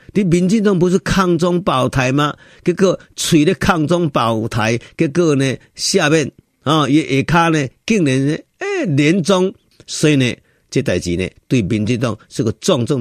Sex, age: male, 50-69